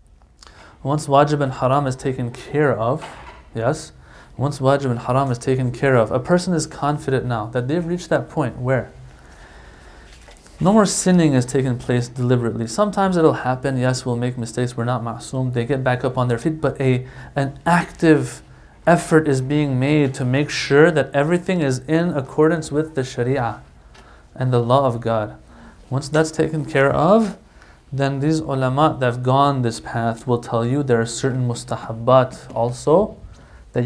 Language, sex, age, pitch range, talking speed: English, male, 30-49, 120-155 Hz, 175 wpm